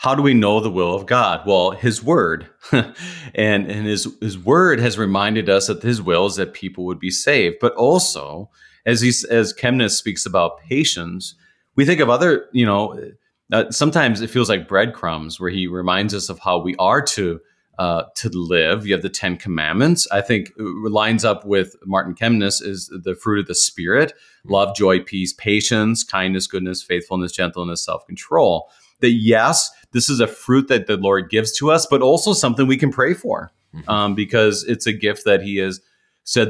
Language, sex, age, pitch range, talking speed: English, male, 30-49, 95-120 Hz, 195 wpm